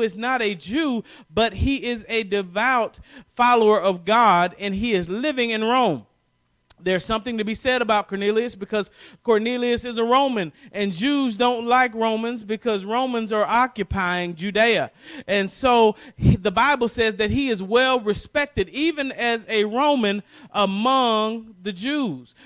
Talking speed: 150 wpm